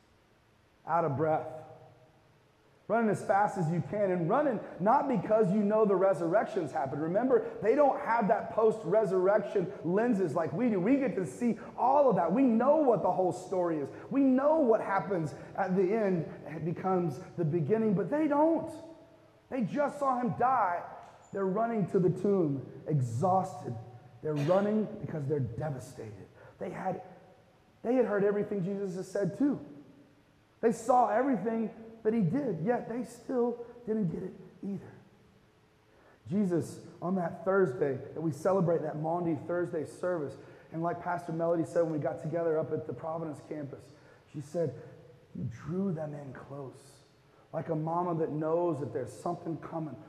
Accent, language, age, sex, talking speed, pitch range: American, English, 30-49, male, 160 wpm, 145-205 Hz